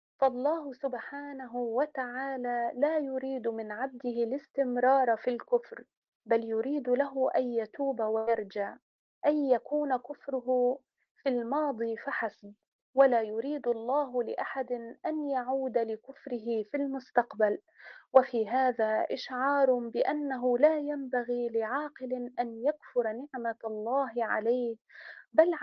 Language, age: Arabic, 30-49